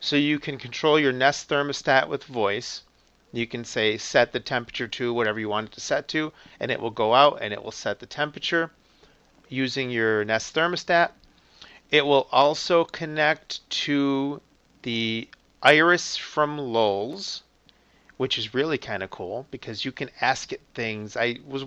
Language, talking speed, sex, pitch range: English, 165 wpm, male, 120-150 Hz